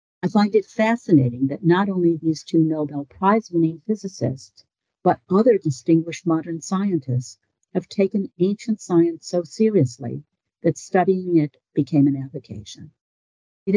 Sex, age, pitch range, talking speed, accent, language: female, 60-79, 130-170 Hz, 135 wpm, American, English